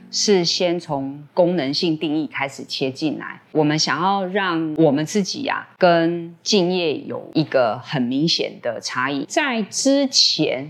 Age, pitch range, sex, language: 20-39, 150-195 Hz, female, Chinese